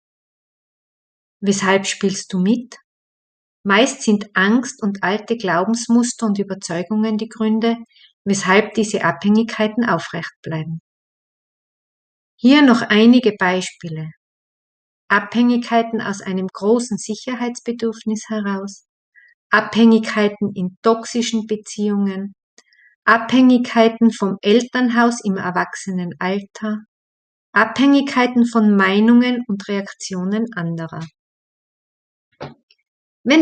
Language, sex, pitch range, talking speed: German, female, 195-235 Hz, 80 wpm